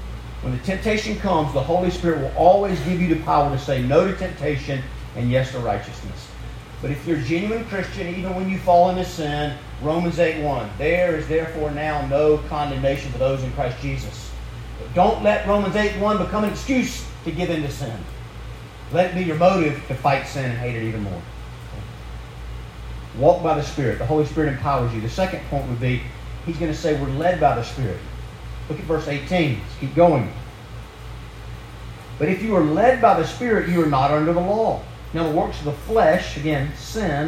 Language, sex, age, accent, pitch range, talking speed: English, male, 40-59, American, 135-190 Hz, 200 wpm